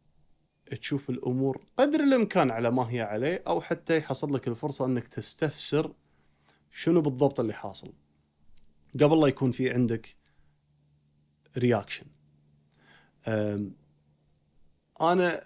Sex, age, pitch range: male, 30-49, 110-150 Hz